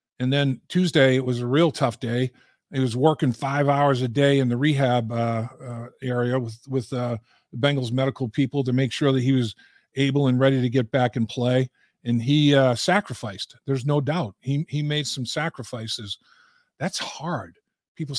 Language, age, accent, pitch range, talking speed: English, 50-69, American, 125-155 Hz, 190 wpm